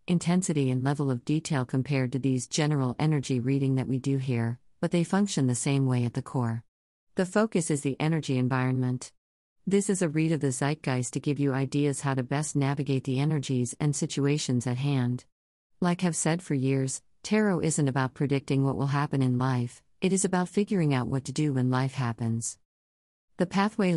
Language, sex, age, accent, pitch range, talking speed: English, female, 50-69, American, 130-160 Hz, 195 wpm